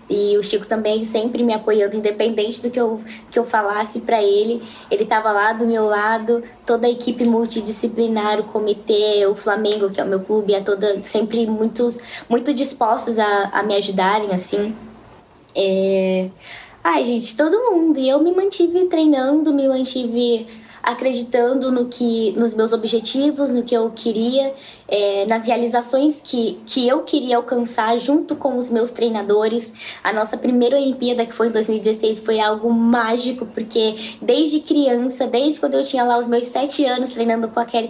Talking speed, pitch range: 170 wpm, 215-245 Hz